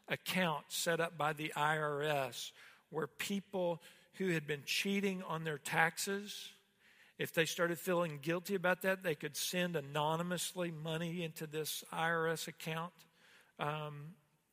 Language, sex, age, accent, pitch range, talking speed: English, male, 50-69, American, 155-195 Hz, 130 wpm